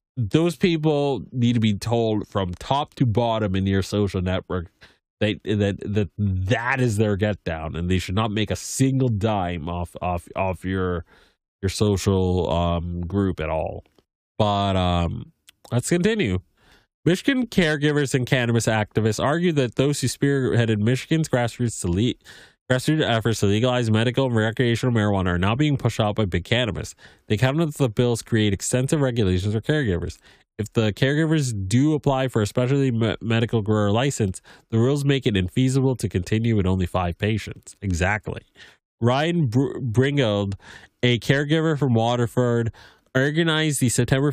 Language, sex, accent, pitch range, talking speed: English, male, American, 100-135 Hz, 155 wpm